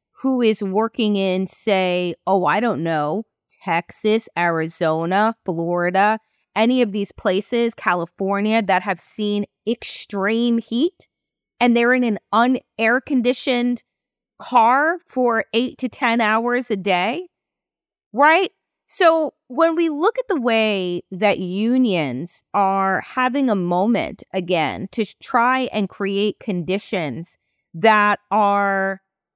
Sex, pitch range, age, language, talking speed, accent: female, 195-255 Hz, 30-49, English, 120 wpm, American